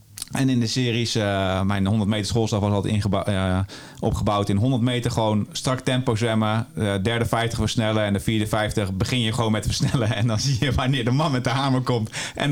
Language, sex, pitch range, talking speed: Dutch, male, 105-125 Hz, 220 wpm